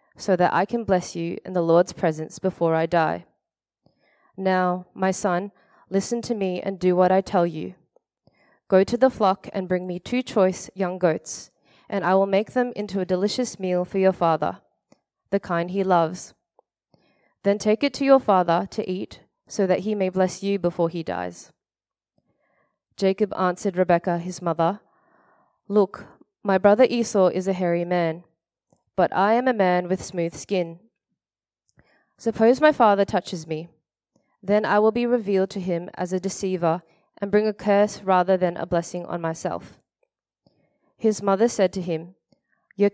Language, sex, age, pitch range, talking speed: English, female, 20-39, 175-210 Hz, 170 wpm